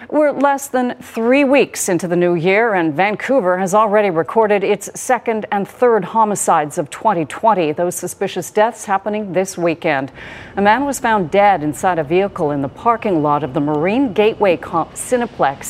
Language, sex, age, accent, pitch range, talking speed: English, female, 40-59, American, 175-230 Hz, 170 wpm